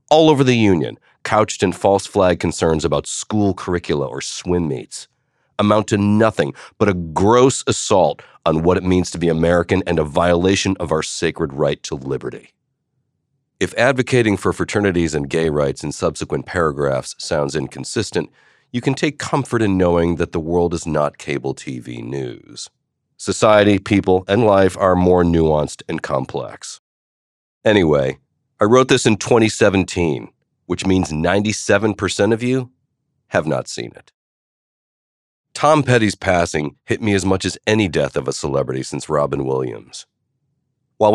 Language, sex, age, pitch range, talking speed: English, male, 40-59, 85-110 Hz, 155 wpm